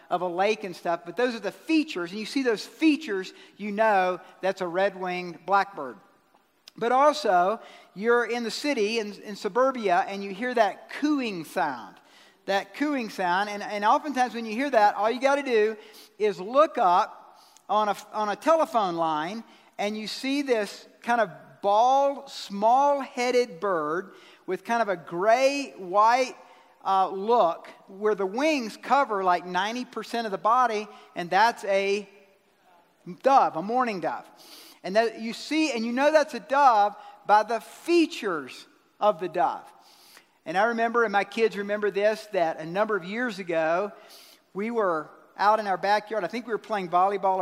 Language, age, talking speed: English, 50-69, 175 wpm